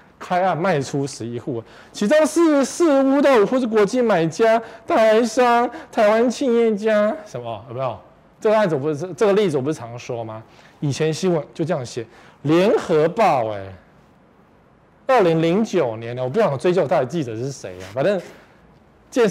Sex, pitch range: male, 130-210 Hz